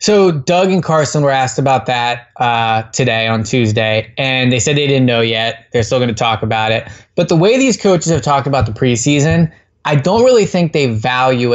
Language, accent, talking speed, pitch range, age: English, American, 220 wpm, 120-155 Hz, 20-39